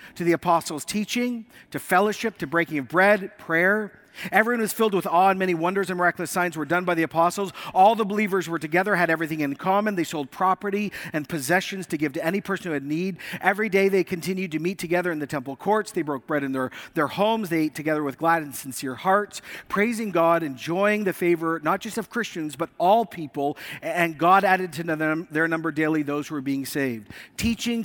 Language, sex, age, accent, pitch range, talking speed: English, male, 50-69, American, 155-200 Hz, 220 wpm